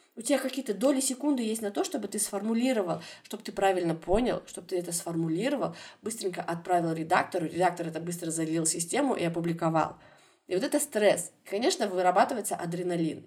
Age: 20-39